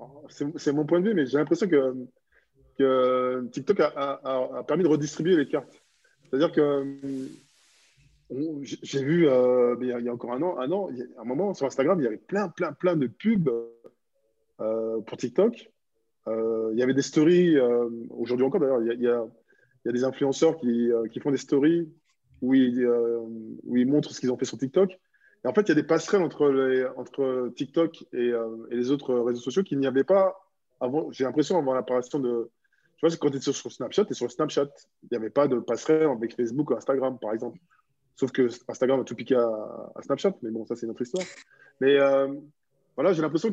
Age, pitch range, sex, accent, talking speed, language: 20-39, 125-155 Hz, male, French, 225 wpm, French